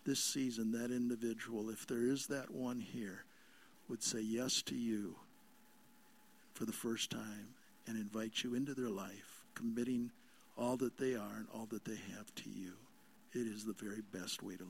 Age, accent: 60-79, American